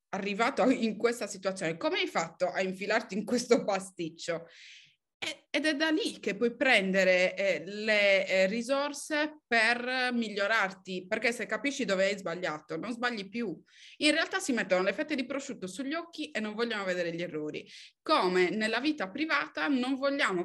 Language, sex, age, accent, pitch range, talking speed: Italian, female, 20-39, native, 190-275 Hz, 160 wpm